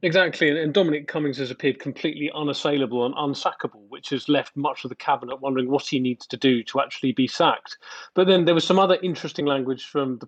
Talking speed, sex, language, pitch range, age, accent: 220 wpm, male, English, 135-165 Hz, 30-49, British